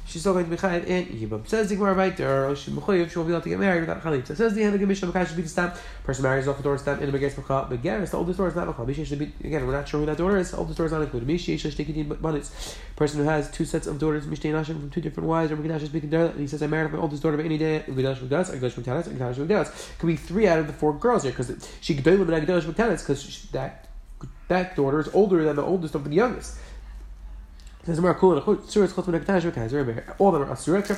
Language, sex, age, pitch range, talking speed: English, male, 20-39, 145-185 Hz, 185 wpm